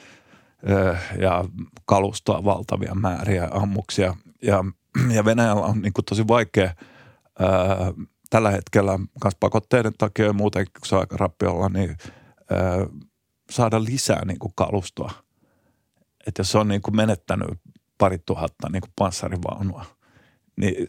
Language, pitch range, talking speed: Finnish, 95-110 Hz, 125 wpm